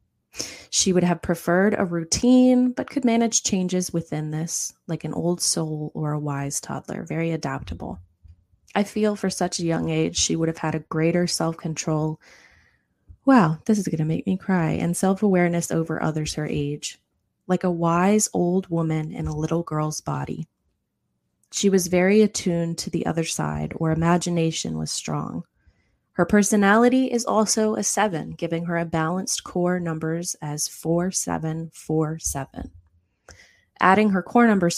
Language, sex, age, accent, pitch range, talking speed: English, female, 20-39, American, 155-185 Hz, 160 wpm